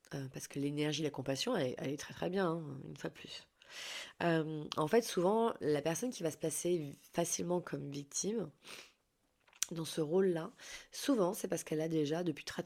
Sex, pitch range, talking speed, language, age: female, 155-195 Hz, 190 wpm, French, 20-39